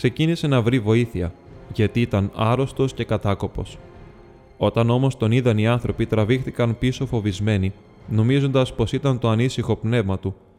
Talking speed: 140 wpm